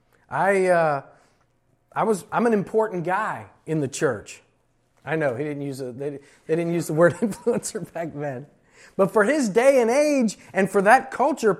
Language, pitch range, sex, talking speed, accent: English, 155-230 Hz, male, 185 wpm, American